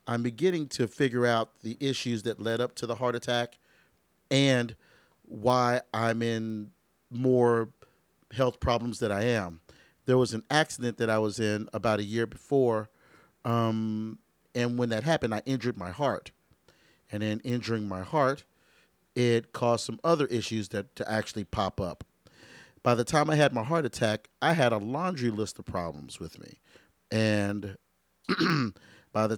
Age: 40-59